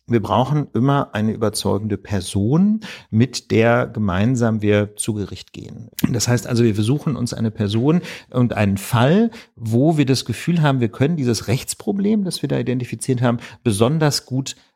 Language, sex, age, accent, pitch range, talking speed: German, male, 50-69, German, 110-135 Hz, 165 wpm